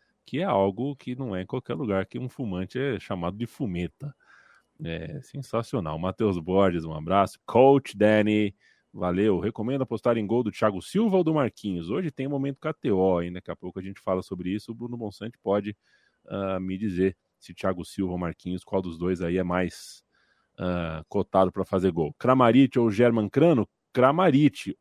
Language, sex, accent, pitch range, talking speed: Portuguese, male, Brazilian, 95-115 Hz, 185 wpm